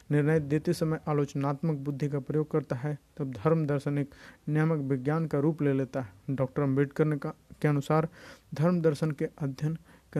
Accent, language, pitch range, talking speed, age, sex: native, Hindi, 145-165 Hz, 155 wpm, 50-69, male